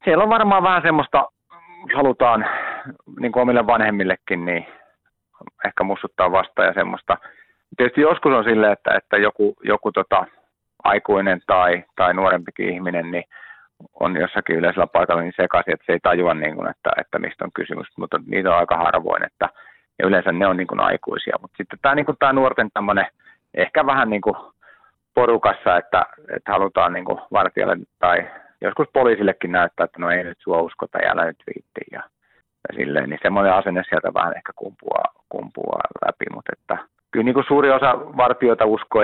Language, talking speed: Finnish, 145 wpm